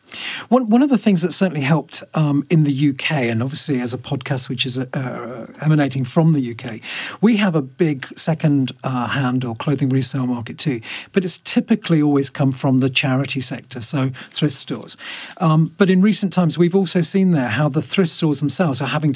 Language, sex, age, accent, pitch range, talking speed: English, male, 40-59, British, 130-170 Hz, 195 wpm